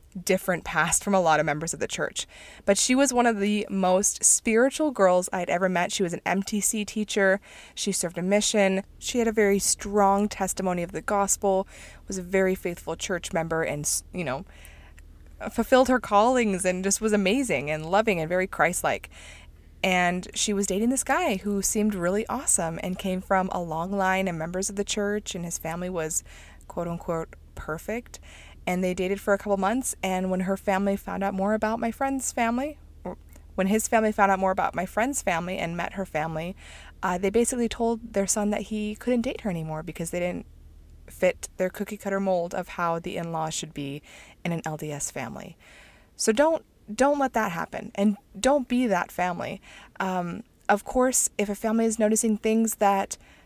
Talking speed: 195 wpm